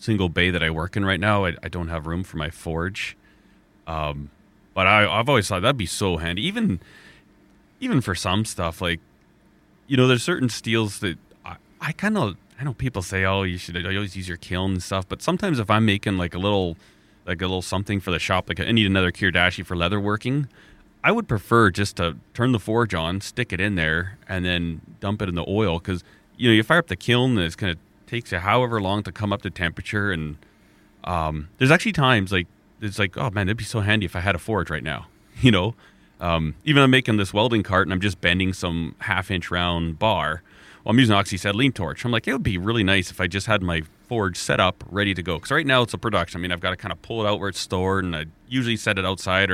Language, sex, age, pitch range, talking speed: English, male, 30-49, 90-105 Hz, 250 wpm